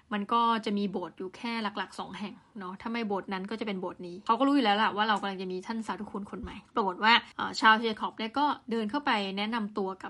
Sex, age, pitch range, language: female, 20-39, 210-265 Hz, Thai